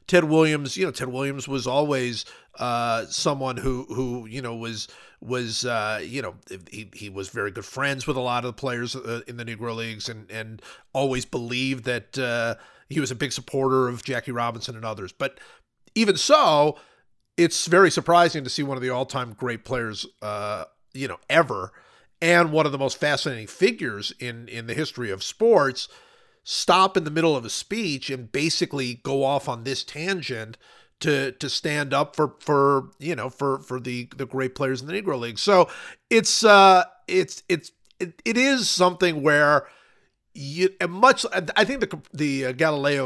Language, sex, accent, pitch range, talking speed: English, male, American, 125-170 Hz, 185 wpm